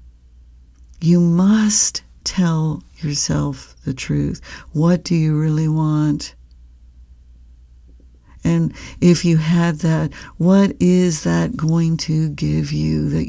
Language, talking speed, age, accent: English, 110 wpm, 60-79, American